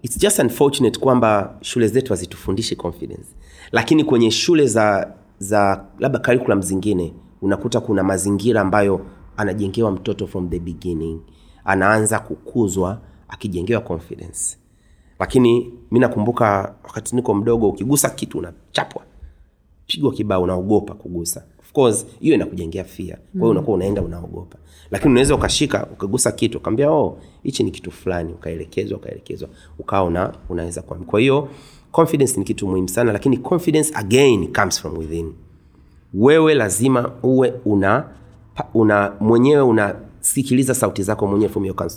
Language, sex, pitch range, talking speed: Swahili, male, 90-120 Hz, 130 wpm